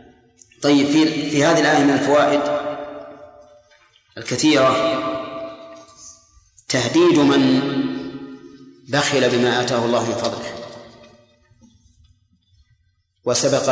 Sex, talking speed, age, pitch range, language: male, 70 wpm, 30-49, 125-145 Hz, Arabic